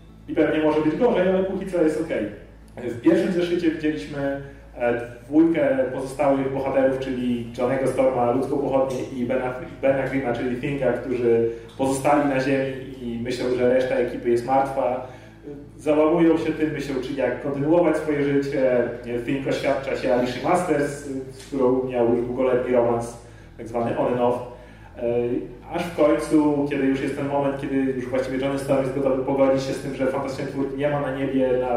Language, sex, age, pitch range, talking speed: Polish, male, 30-49, 125-145 Hz, 170 wpm